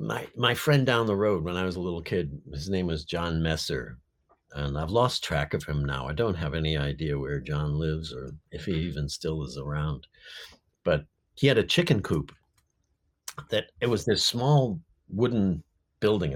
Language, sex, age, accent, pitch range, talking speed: English, male, 50-69, American, 75-105 Hz, 190 wpm